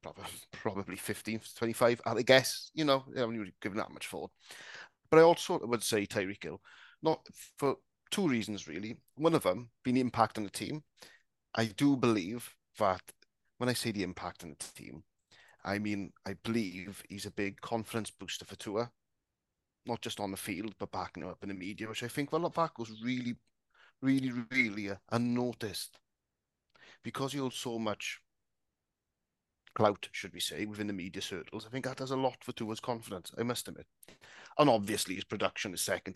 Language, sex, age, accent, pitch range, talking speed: English, male, 30-49, British, 100-120 Hz, 185 wpm